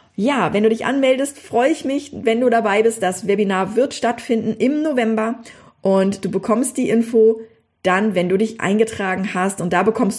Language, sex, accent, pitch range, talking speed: German, female, German, 195-250 Hz, 190 wpm